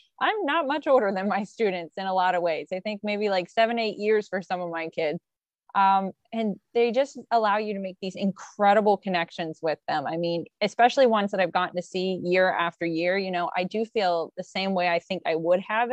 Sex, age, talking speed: female, 20-39, 235 wpm